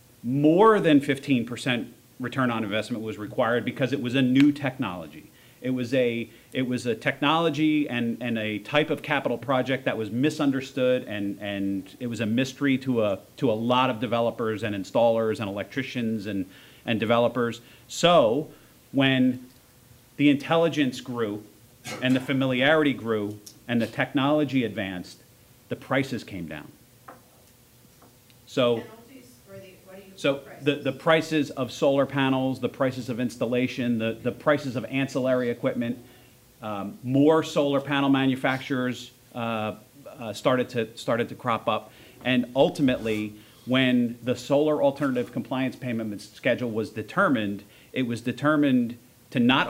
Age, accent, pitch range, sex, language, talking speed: 40-59, American, 120-140 Hz, male, English, 140 wpm